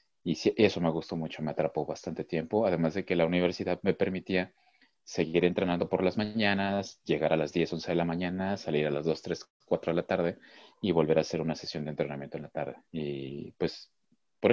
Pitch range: 80-95 Hz